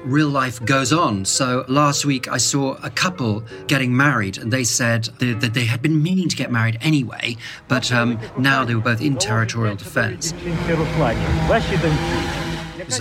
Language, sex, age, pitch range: English, male, 40-59, 115-140 Hz